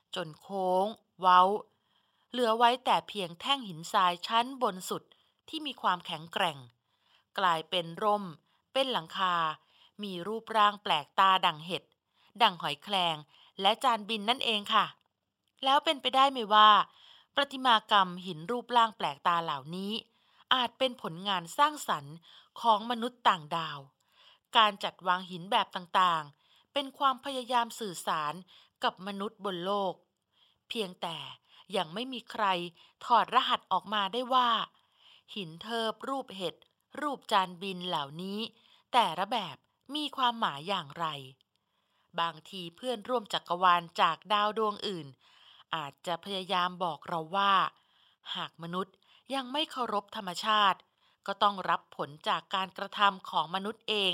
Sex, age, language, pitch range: female, 20-39, Thai, 180-240 Hz